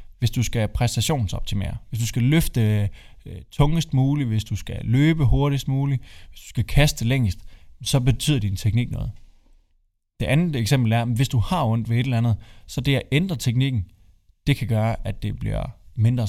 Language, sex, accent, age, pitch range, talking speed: Danish, male, native, 20-39, 105-130 Hz, 185 wpm